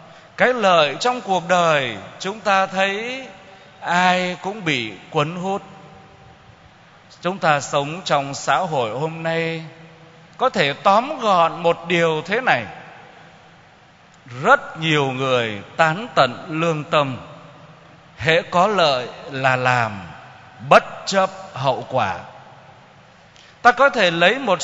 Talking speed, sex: 120 wpm, male